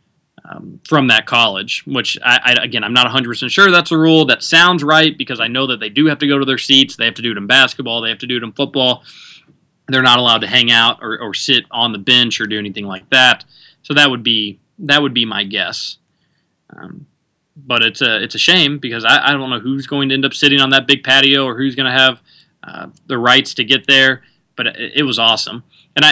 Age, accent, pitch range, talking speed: 20-39, American, 125-150 Hz, 255 wpm